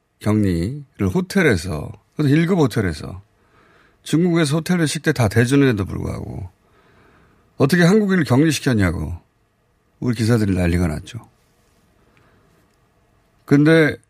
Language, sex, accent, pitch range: Korean, male, native, 100-155 Hz